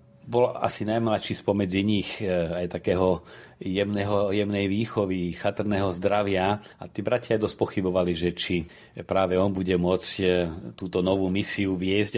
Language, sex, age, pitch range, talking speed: Slovak, male, 40-59, 90-100 Hz, 140 wpm